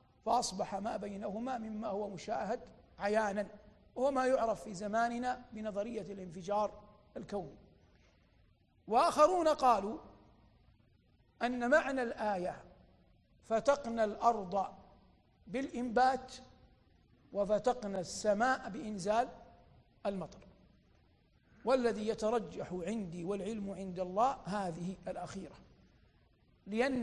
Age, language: 50-69, Arabic